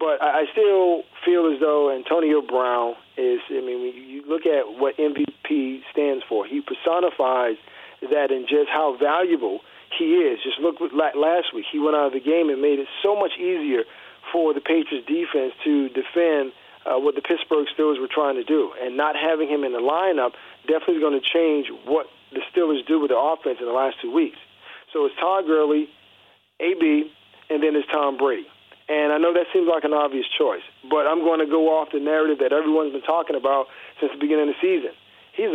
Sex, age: male, 40-59